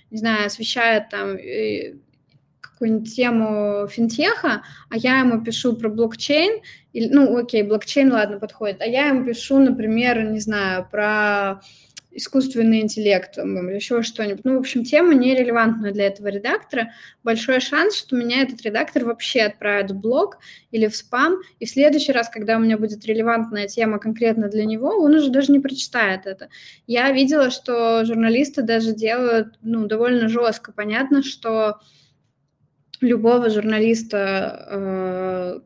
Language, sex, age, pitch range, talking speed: Russian, female, 20-39, 205-245 Hz, 145 wpm